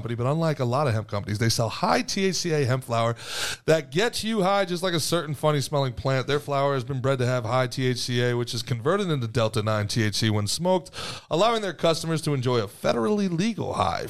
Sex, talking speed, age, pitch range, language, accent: male, 200 wpm, 30-49, 115-150 Hz, English, American